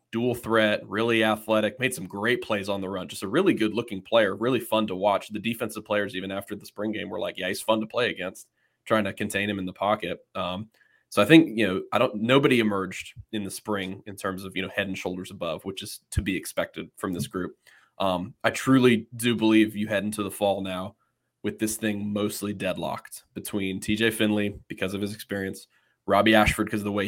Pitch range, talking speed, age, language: 95-110 Hz, 230 wpm, 20-39, English